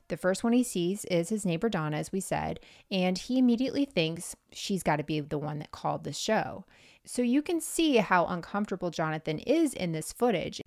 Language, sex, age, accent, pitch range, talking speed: English, female, 20-39, American, 160-230 Hz, 210 wpm